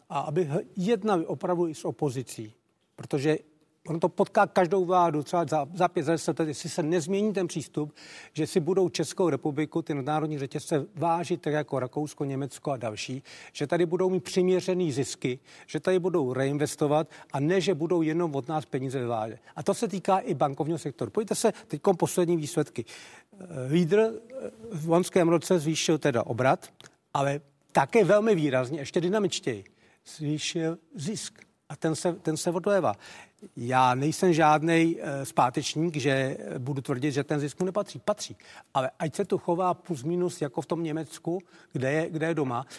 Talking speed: 170 wpm